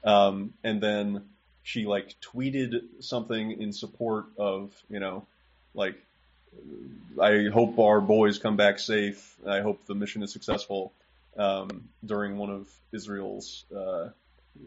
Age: 20-39